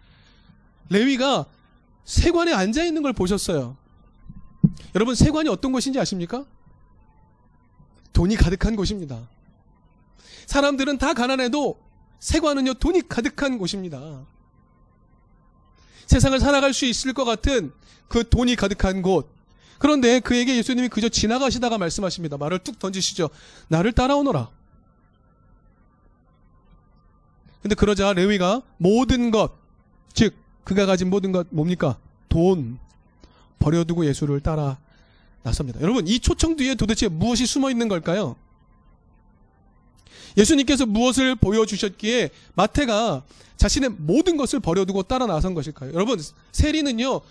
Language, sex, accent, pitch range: Korean, male, native, 155-255 Hz